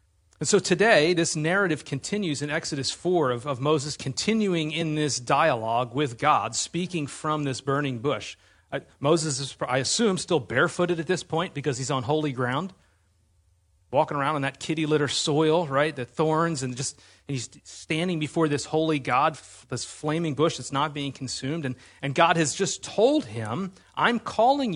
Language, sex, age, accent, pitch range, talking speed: English, male, 30-49, American, 125-175 Hz, 175 wpm